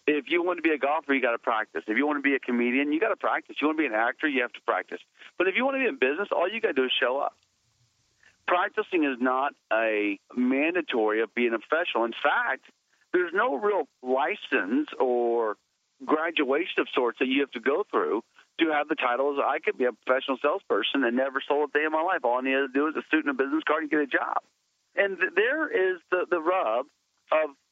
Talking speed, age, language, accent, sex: 250 wpm, 40-59, English, American, male